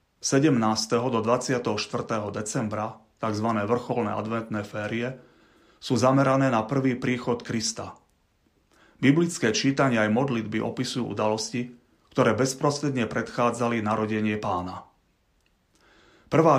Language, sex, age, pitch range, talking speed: Slovak, male, 30-49, 110-130 Hz, 95 wpm